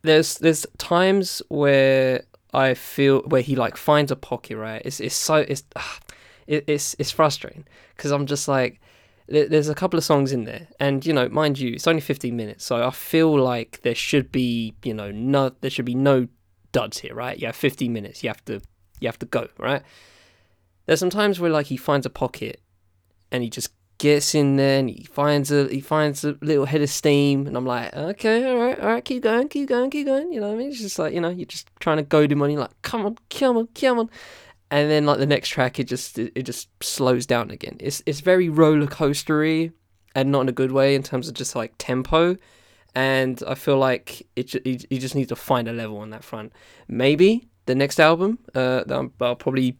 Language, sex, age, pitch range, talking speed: English, male, 10-29, 125-155 Hz, 225 wpm